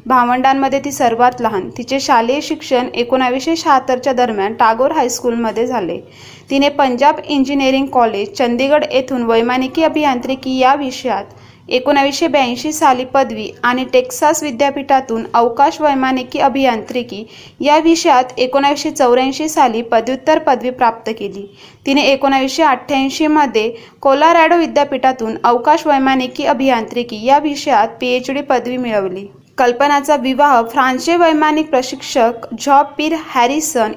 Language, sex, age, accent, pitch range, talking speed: Marathi, female, 20-39, native, 245-285 Hz, 110 wpm